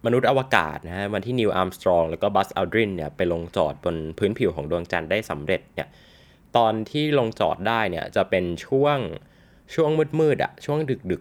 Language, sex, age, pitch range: Thai, male, 20-39, 85-105 Hz